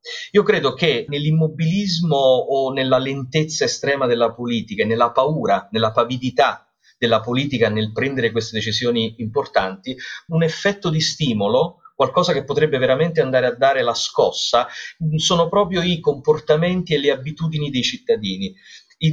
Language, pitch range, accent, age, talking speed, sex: Italian, 130-205 Hz, native, 40-59, 140 wpm, male